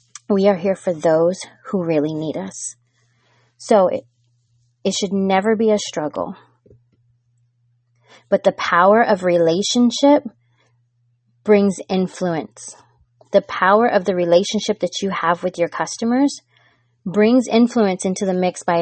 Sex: female